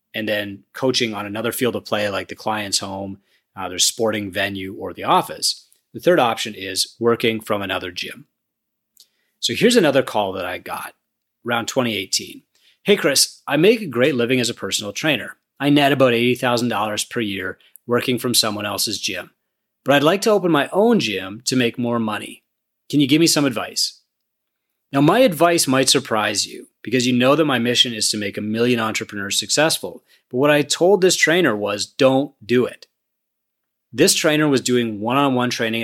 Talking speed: 185 wpm